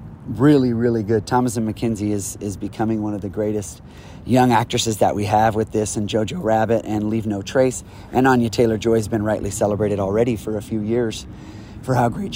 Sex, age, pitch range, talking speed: male, 30-49, 105-125 Hz, 210 wpm